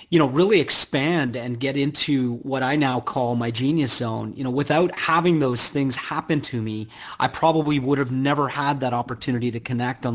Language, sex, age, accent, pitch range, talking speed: English, male, 40-59, American, 125-160 Hz, 200 wpm